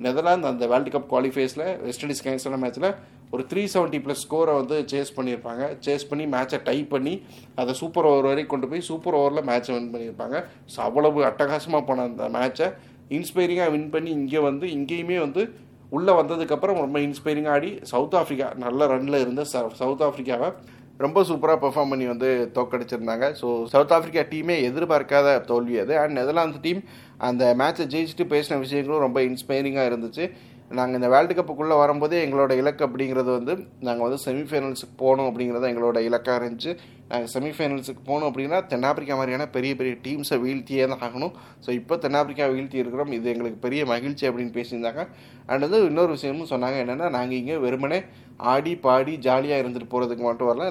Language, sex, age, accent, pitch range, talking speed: Tamil, male, 30-49, native, 125-150 Hz, 165 wpm